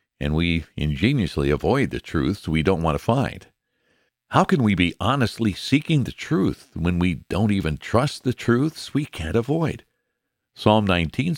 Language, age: English, 60-79